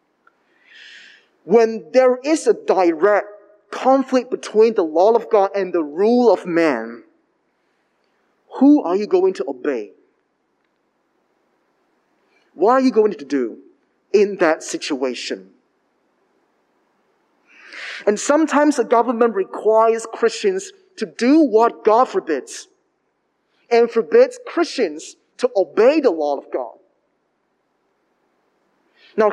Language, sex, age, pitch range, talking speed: English, male, 30-49, 225-380 Hz, 105 wpm